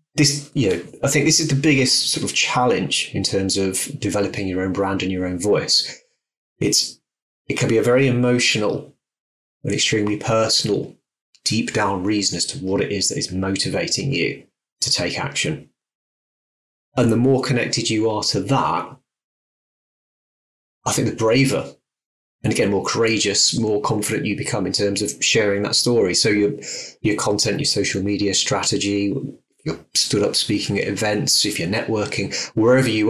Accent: British